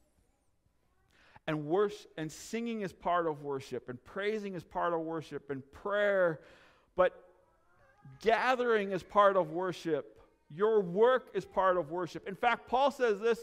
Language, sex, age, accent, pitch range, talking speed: English, male, 50-69, American, 170-245 Hz, 145 wpm